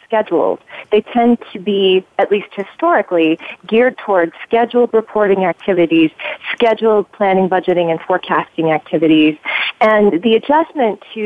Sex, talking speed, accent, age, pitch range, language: female, 125 wpm, American, 30-49, 175-225 Hz, English